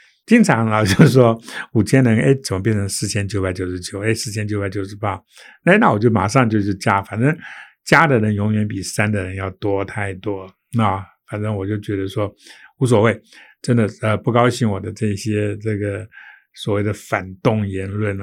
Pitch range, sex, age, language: 100-115 Hz, male, 60-79, Chinese